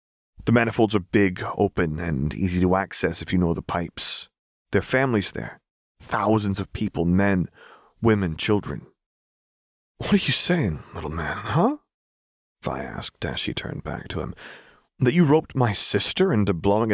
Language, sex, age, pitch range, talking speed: English, male, 30-49, 85-110 Hz, 165 wpm